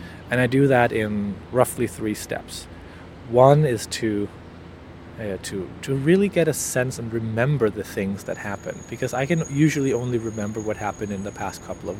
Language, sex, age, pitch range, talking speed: English, male, 30-49, 95-120 Hz, 185 wpm